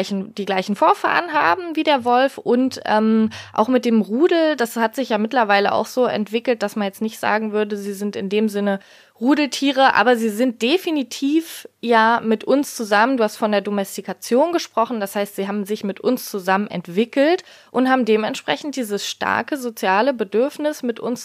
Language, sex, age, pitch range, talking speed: German, female, 20-39, 210-260 Hz, 185 wpm